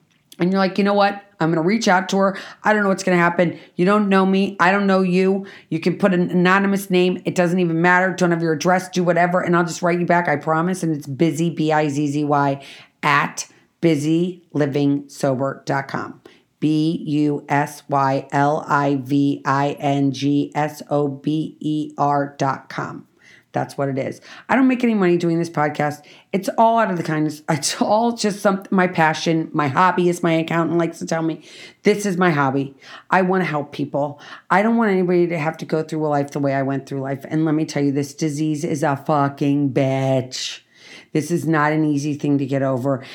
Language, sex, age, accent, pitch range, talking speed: English, female, 40-59, American, 145-180 Hz, 190 wpm